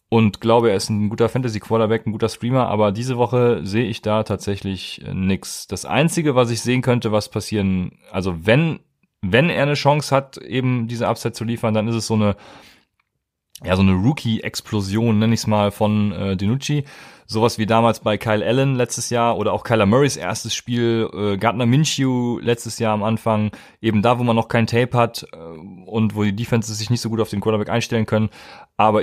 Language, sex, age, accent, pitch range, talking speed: German, male, 30-49, German, 105-120 Hz, 205 wpm